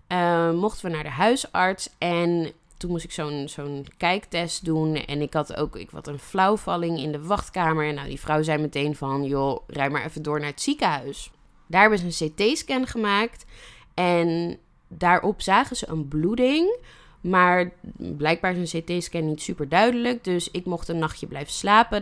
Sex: female